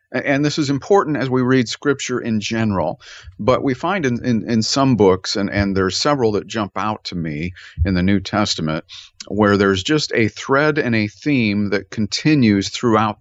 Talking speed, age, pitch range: 190 wpm, 50-69, 105-135 Hz